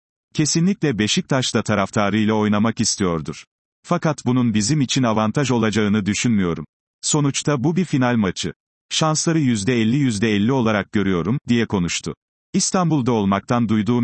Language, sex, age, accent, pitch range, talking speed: Turkish, male, 40-59, native, 100-125 Hz, 120 wpm